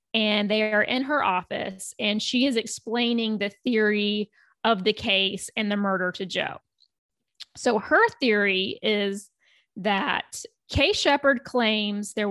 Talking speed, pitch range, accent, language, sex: 140 wpm, 200-245 Hz, American, English, female